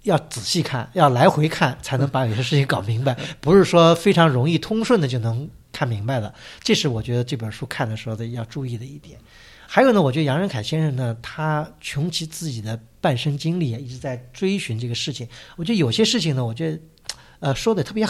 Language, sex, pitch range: Chinese, male, 125-180 Hz